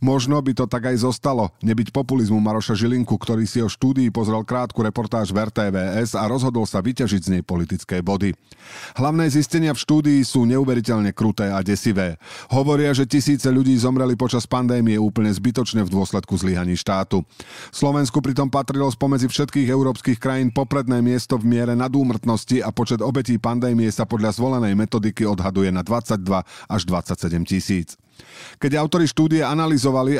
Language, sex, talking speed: Slovak, male, 155 wpm